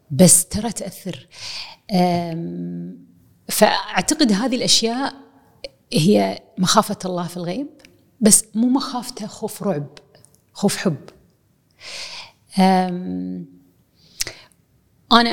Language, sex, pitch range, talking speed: Arabic, female, 170-210 Hz, 75 wpm